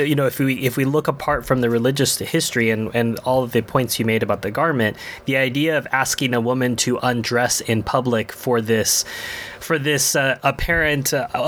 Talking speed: 210 wpm